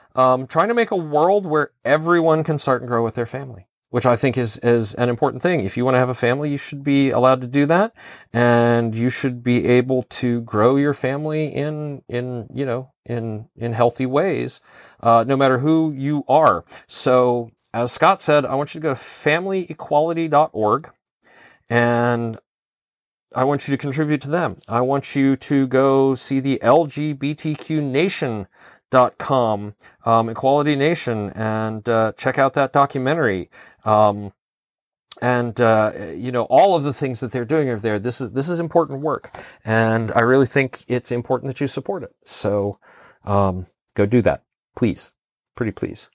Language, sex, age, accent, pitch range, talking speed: English, male, 40-59, American, 120-150 Hz, 180 wpm